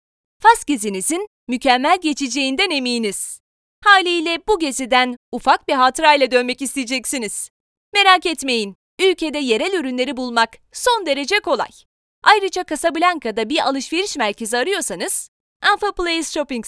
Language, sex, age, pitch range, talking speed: Turkish, female, 30-49, 255-370 Hz, 110 wpm